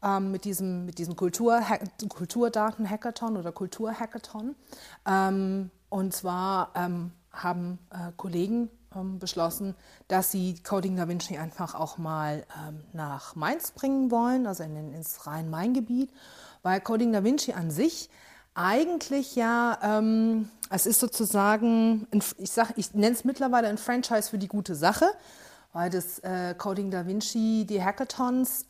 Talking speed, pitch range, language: 125 wpm, 180-230 Hz, German